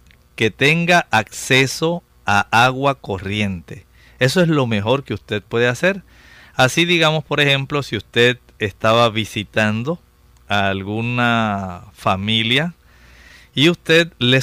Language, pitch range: Spanish, 110-155 Hz